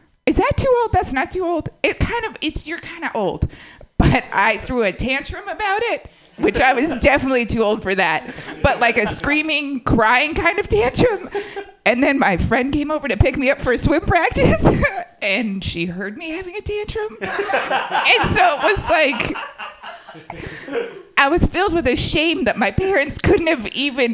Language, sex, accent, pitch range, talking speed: English, female, American, 235-370 Hz, 190 wpm